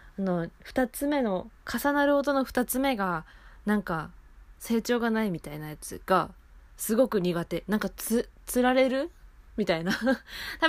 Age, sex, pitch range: 20-39, female, 165-235 Hz